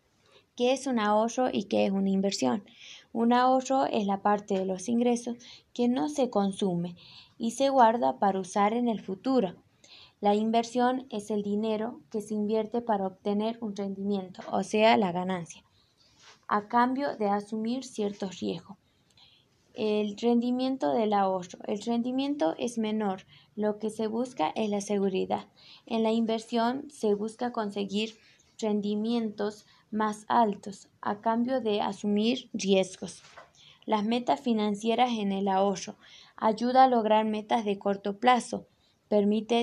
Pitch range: 200-235 Hz